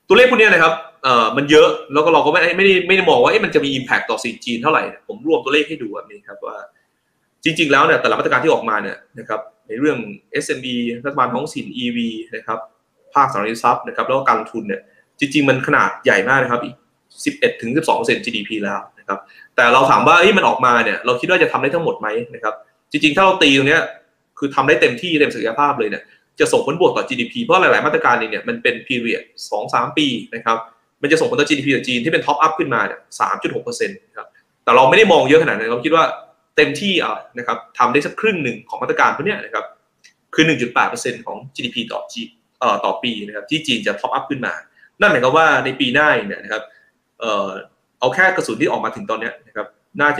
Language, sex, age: Thai, male, 20-39